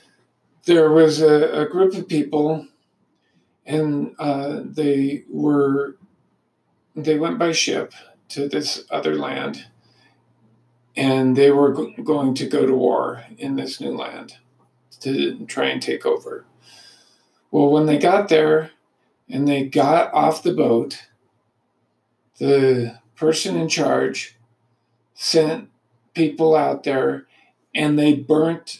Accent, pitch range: American, 135-155 Hz